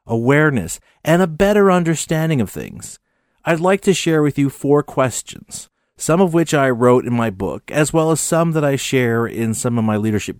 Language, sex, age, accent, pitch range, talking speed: English, male, 40-59, American, 110-165 Hz, 200 wpm